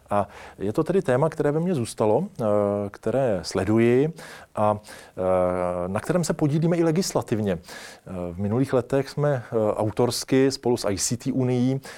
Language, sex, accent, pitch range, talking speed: Czech, male, native, 100-125 Hz, 135 wpm